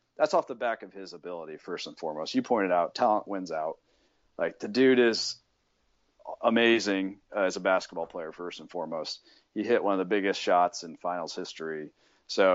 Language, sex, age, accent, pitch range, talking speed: English, male, 40-59, American, 90-115 Hz, 190 wpm